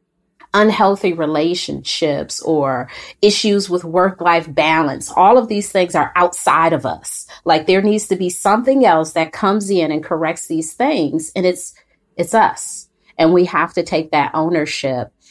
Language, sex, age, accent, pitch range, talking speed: English, female, 30-49, American, 150-195 Hz, 160 wpm